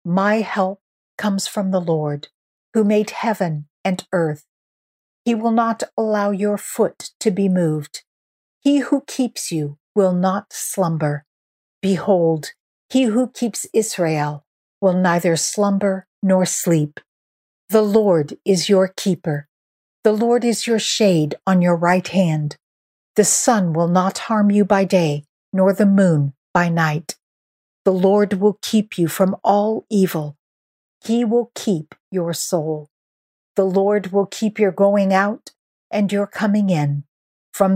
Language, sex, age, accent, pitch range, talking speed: English, female, 50-69, American, 160-210 Hz, 140 wpm